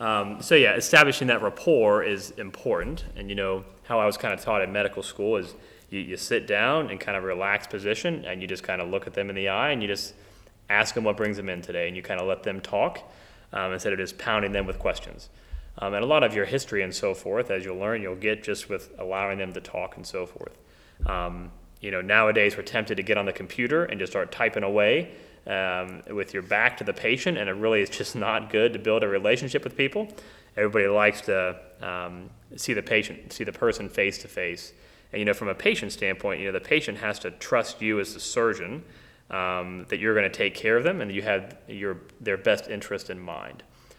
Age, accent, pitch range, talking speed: 30-49, American, 90-105 Hz, 240 wpm